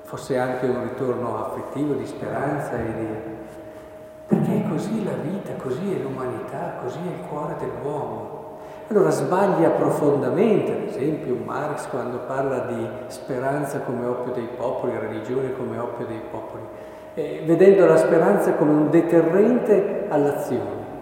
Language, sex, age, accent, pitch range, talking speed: Italian, male, 50-69, native, 125-195 Hz, 140 wpm